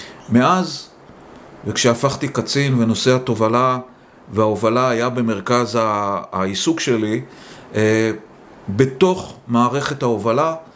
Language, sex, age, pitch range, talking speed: Hebrew, male, 40-59, 110-135 Hz, 75 wpm